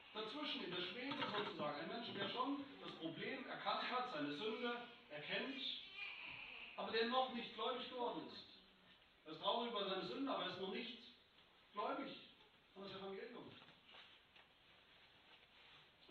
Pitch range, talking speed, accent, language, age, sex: 145-195 Hz, 140 wpm, German, German, 40-59, male